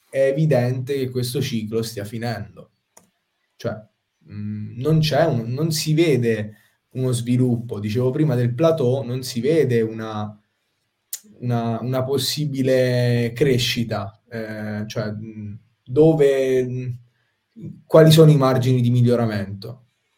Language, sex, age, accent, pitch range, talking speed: Italian, male, 20-39, native, 110-130 Hz, 120 wpm